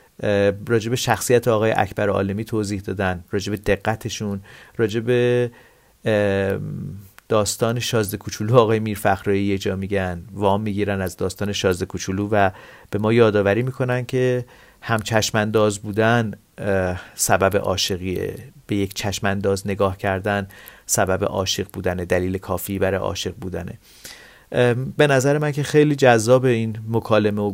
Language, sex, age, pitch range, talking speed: Persian, male, 40-59, 100-115 Hz, 125 wpm